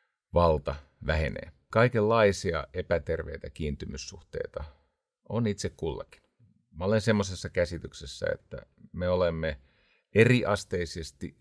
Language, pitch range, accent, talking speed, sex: Finnish, 80-105 Hz, native, 85 wpm, male